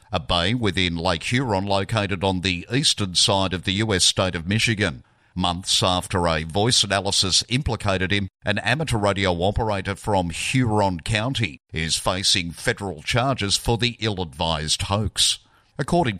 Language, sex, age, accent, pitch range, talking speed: English, male, 50-69, Australian, 90-115 Hz, 145 wpm